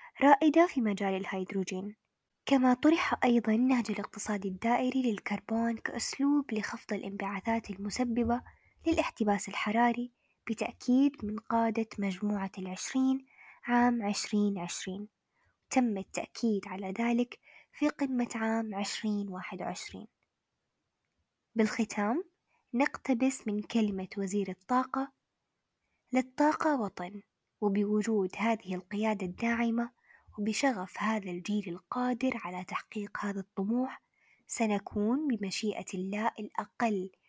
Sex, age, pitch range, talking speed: female, 10-29, 205-255 Hz, 90 wpm